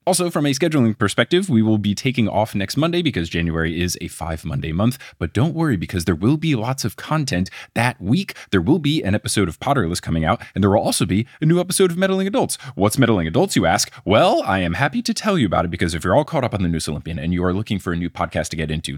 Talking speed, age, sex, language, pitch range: 270 wpm, 20-39, male, English, 95-145 Hz